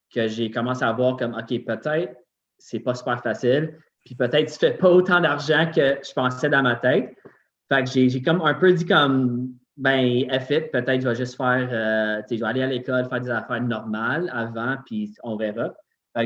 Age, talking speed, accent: 20-39, 215 wpm, Canadian